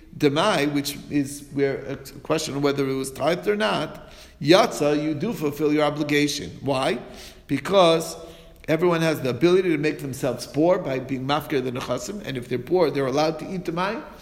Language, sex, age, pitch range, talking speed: English, male, 50-69, 135-170 Hz, 180 wpm